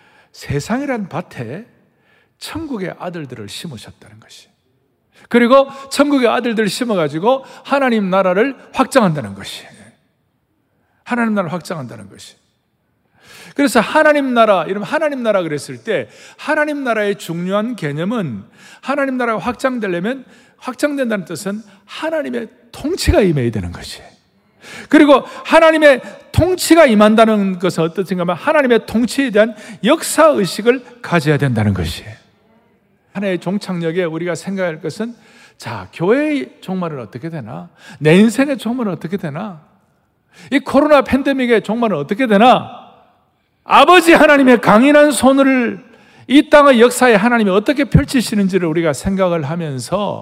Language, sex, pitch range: Korean, male, 180-265 Hz